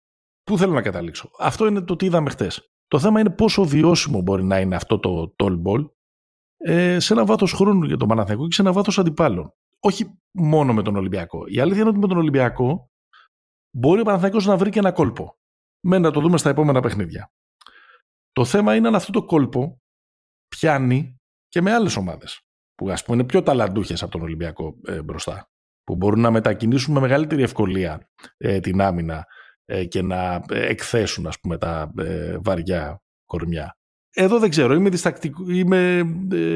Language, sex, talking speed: Greek, male, 180 wpm